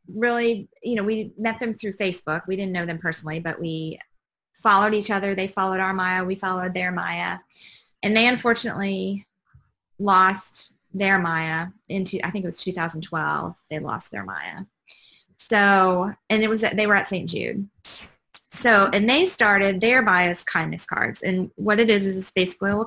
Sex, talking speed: female, 180 wpm